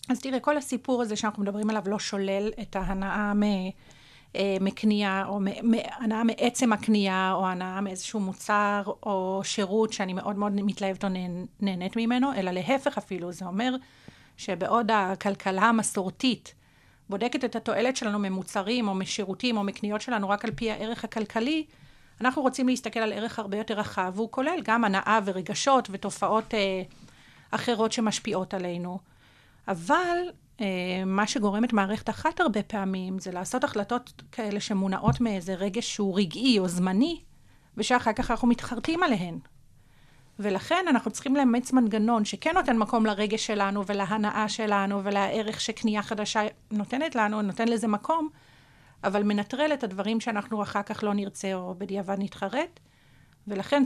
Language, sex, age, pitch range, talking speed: Hebrew, female, 40-59, 195-230 Hz, 145 wpm